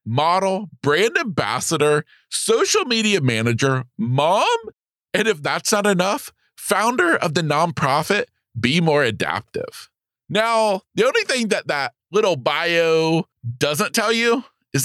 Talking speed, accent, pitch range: 125 wpm, American, 130-210 Hz